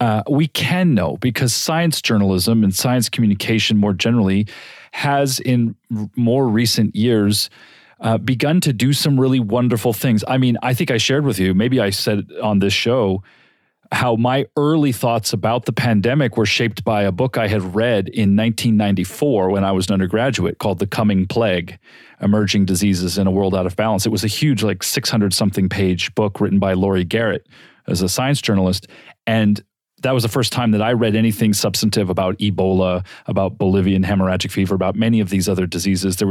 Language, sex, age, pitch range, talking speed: English, male, 40-59, 100-130 Hz, 190 wpm